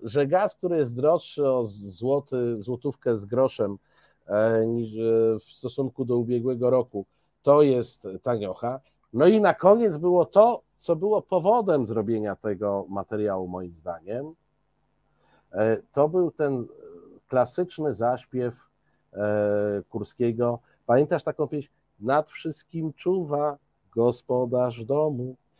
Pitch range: 120-170 Hz